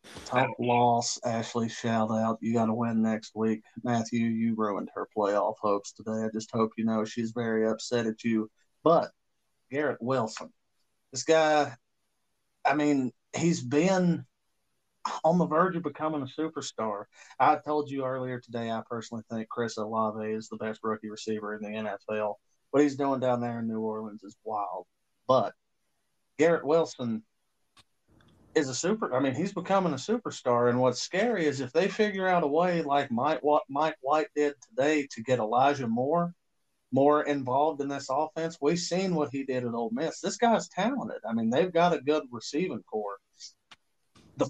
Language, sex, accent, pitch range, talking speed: English, male, American, 115-150 Hz, 175 wpm